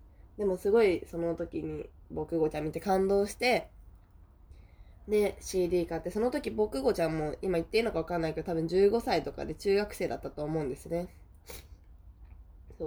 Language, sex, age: Japanese, female, 20-39